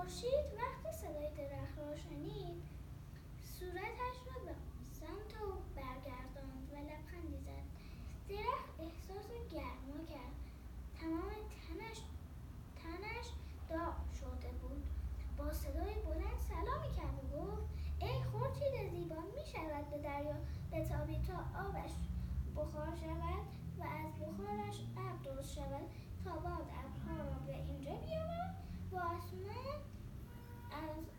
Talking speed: 100 wpm